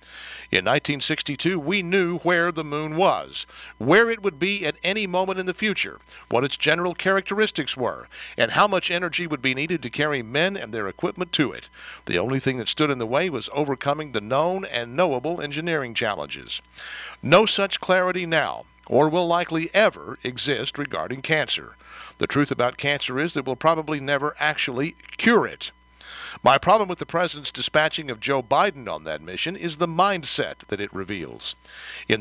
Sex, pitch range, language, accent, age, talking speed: male, 135-175 Hz, English, American, 60-79, 180 wpm